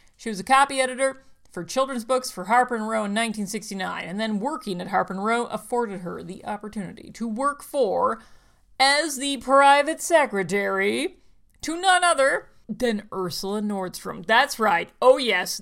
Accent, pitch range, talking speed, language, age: American, 195-265 Hz, 155 wpm, English, 40-59